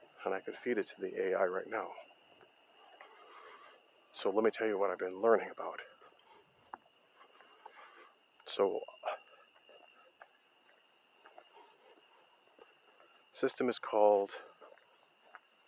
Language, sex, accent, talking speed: English, male, American, 90 wpm